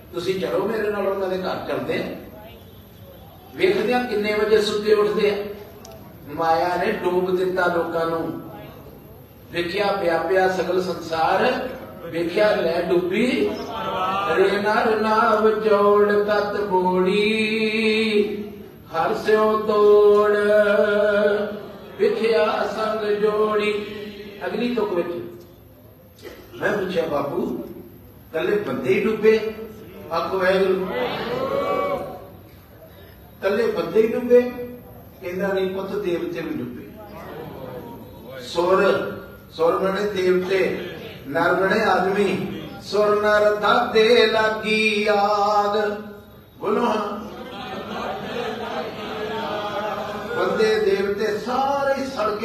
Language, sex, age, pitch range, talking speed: Punjabi, male, 50-69, 185-220 Hz, 75 wpm